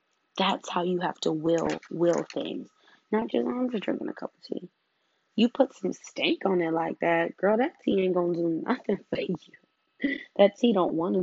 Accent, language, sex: American, English, female